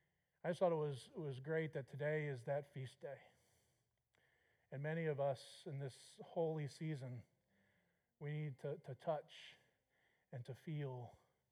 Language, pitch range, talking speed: English, 130-160 Hz, 155 wpm